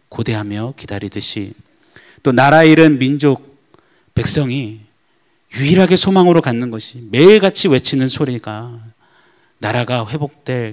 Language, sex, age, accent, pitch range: Korean, male, 30-49, native, 105-140 Hz